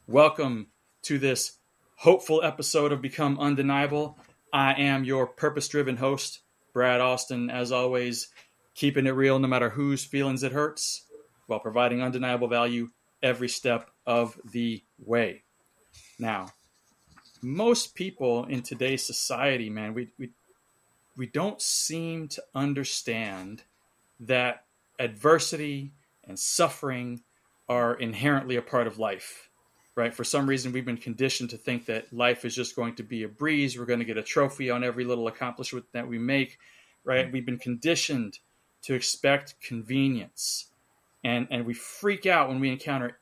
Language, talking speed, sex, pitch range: English, 145 wpm, male, 120-140 Hz